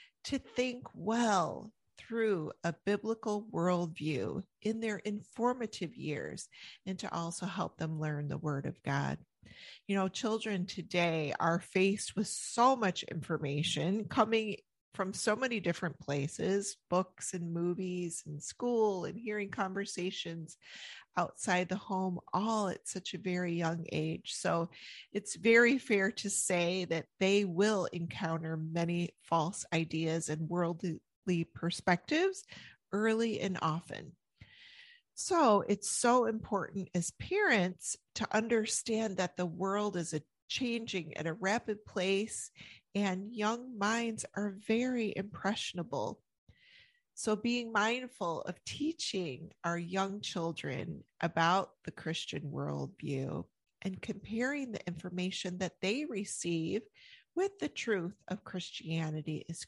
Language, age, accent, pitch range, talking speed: English, 30-49, American, 170-220 Hz, 125 wpm